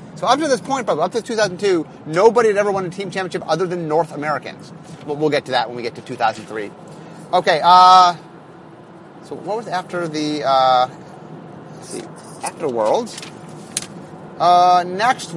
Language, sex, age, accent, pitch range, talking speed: English, male, 30-49, American, 165-215 Hz, 180 wpm